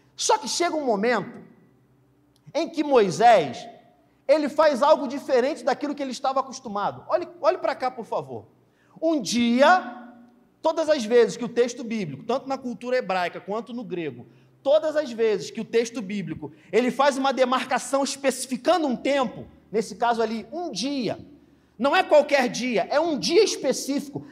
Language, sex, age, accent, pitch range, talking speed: Portuguese, male, 40-59, Brazilian, 210-280 Hz, 165 wpm